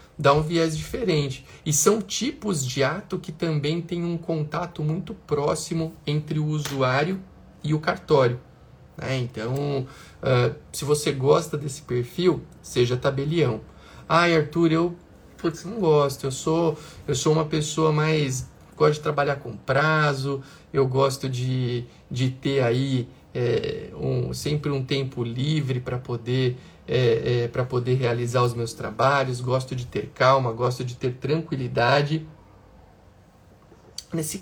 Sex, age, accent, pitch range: male, 50-69, Brazilian, 125-155 Hz